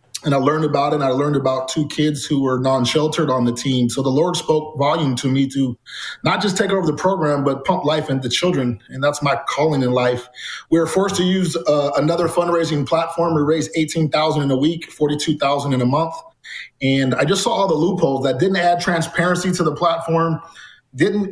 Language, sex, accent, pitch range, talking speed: English, male, American, 135-170 Hz, 215 wpm